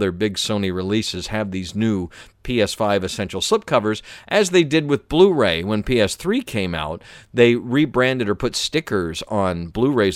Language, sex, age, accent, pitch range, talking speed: English, male, 50-69, American, 95-120 Hz, 155 wpm